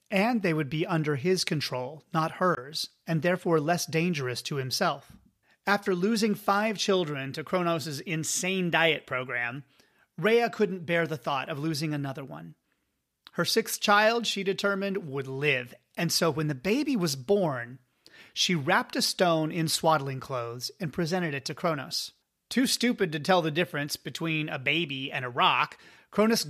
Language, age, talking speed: English, 30-49, 165 wpm